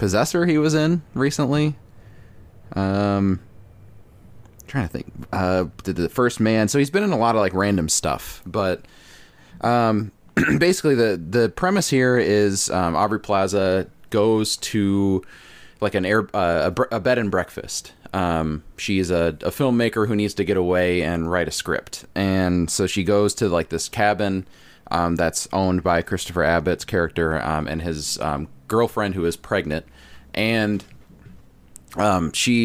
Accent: American